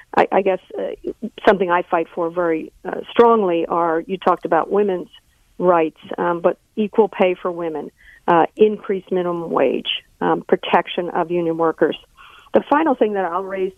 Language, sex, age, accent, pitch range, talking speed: English, female, 50-69, American, 170-205 Hz, 160 wpm